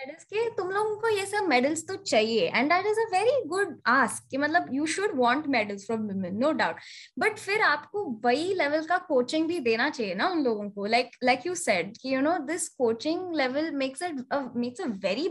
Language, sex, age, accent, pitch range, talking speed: Hindi, female, 10-29, native, 240-335 Hz, 145 wpm